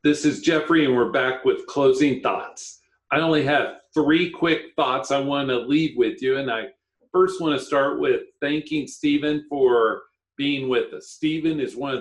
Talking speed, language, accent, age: 180 wpm, English, American, 50-69